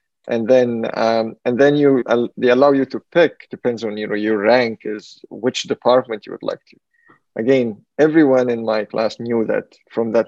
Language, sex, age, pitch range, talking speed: English, male, 20-39, 110-135 Hz, 195 wpm